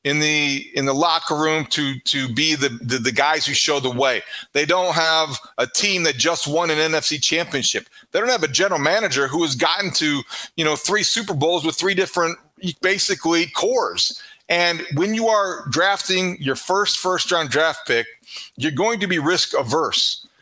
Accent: American